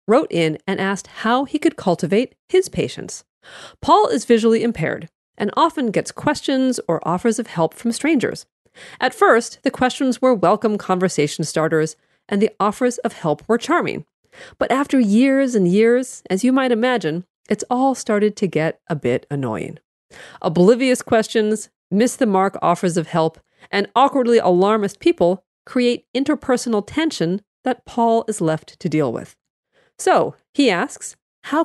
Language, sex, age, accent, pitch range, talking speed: English, female, 40-59, American, 180-250 Hz, 150 wpm